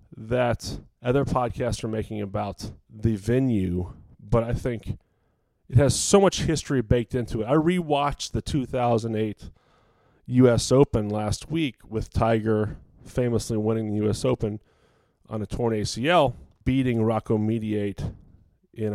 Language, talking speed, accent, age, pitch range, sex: English, 135 wpm, American, 30-49, 110-135 Hz, male